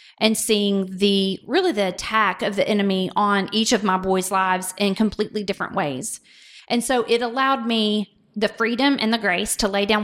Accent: American